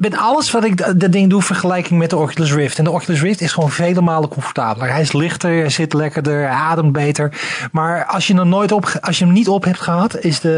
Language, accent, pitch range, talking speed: Dutch, Dutch, 150-180 Hz, 250 wpm